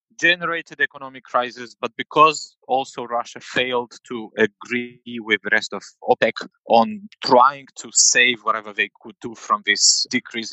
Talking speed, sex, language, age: 150 wpm, male, English, 30-49